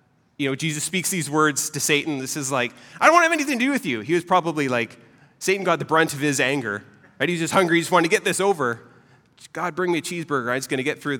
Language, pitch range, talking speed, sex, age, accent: English, 115-170 Hz, 290 wpm, male, 30-49, American